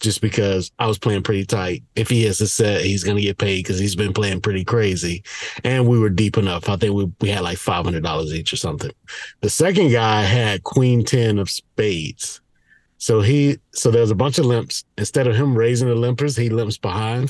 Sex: male